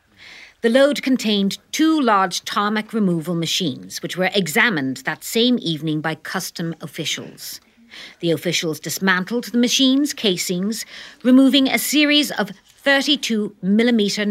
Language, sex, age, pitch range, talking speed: English, female, 50-69, 160-230 Hz, 115 wpm